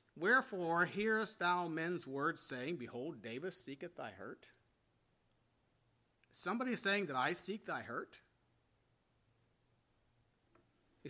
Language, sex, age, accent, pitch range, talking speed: English, male, 40-59, American, 130-190 Hz, 110 wpm